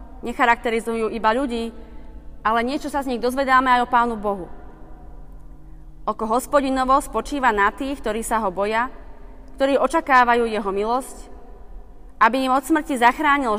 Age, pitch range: 30-49, 195-255 Hz